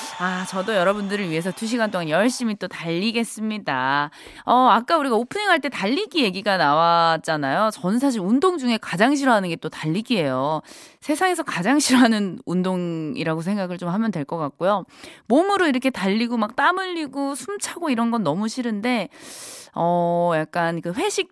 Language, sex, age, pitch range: Korean, female, 20-39, 180-295 Hz